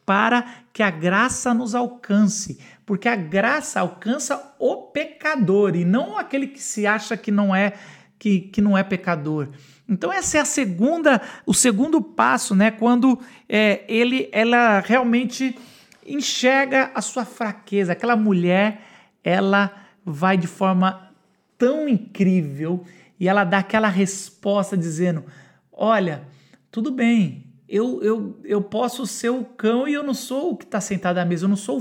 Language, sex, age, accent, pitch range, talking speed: Portuguese, male, 50-69, Brazilian, 180-230 Hz, 150 wpm